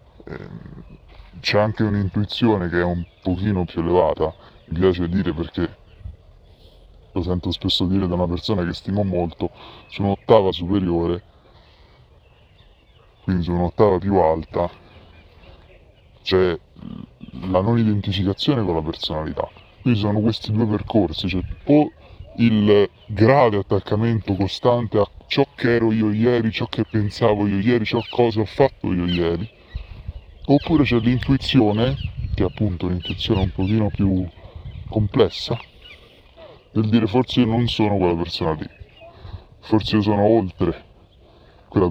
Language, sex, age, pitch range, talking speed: Italian, female, 20-39, 90-110 Hz, 135 wpm